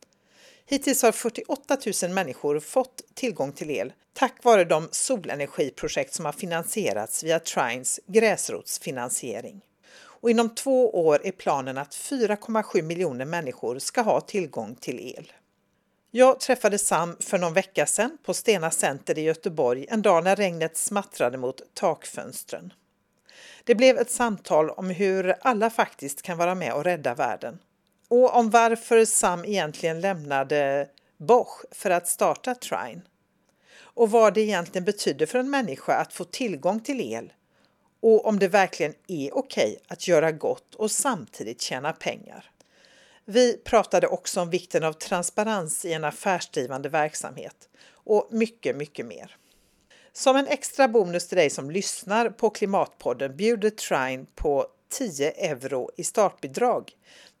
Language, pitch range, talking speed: Swedish, 165-235 Hz, 145 wpm